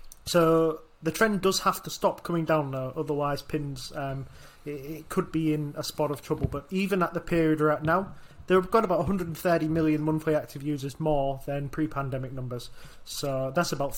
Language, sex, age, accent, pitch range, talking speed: English, male, 20-39, British, 140-165 Hz, 190 wpm